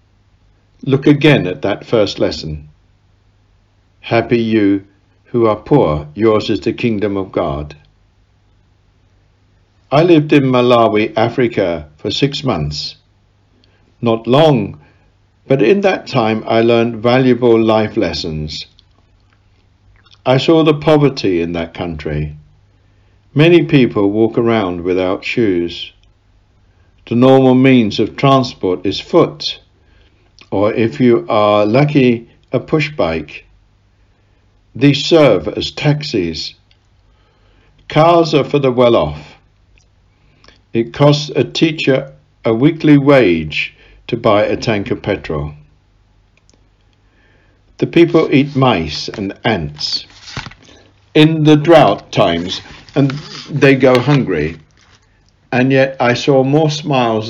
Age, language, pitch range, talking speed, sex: 60-79, English, 95-130 Hz, 110 wpm, male